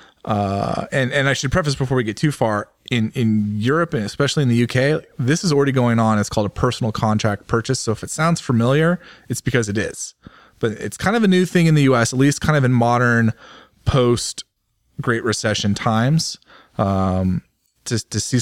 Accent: American